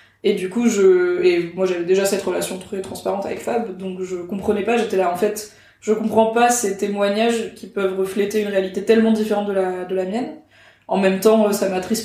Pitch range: 185-215 Hz